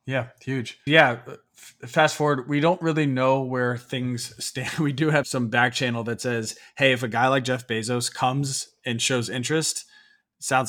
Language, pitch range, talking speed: English, 105-130 Hz, 180 wpm